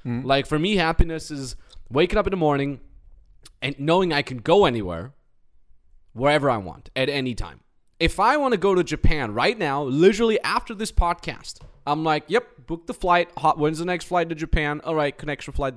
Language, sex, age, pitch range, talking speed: English, male, 20-39, 120-160 Hz, 195 wpm